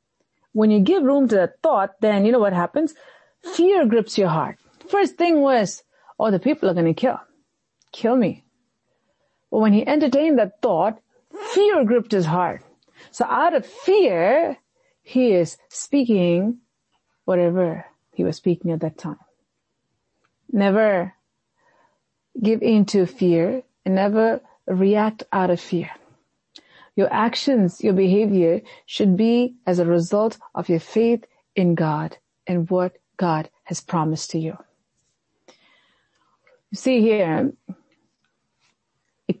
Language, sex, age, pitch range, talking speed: English, female, 40-59, 180-260 Hz, 135 wpm